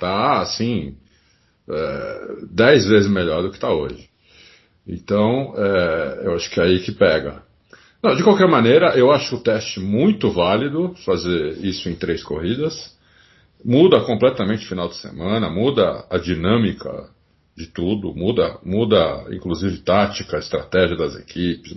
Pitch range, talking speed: 95-130 Hz, 135 wpm